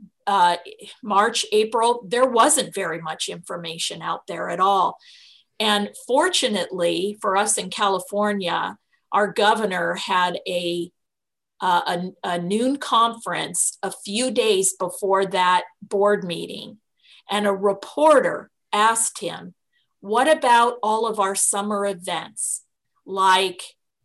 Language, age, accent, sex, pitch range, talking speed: English, 40-59, American, female, 190-230 Hz, 115 wpm